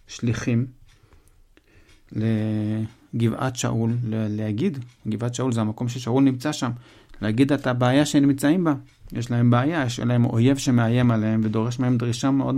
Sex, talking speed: male, 140 wpm